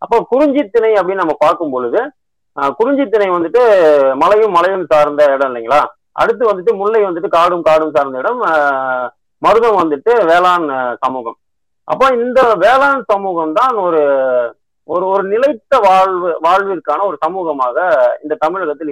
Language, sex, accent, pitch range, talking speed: Tamil, male, native, 150-235 Hz, 130 wpm